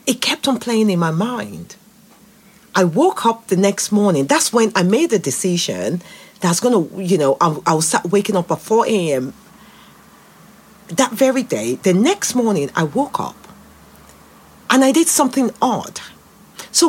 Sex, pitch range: female, 190-250 Hz